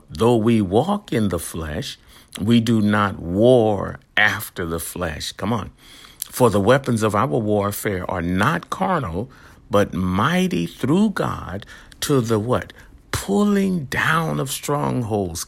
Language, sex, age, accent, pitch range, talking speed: English, male, 60-79, American, 85-110 Hz, 135 wpm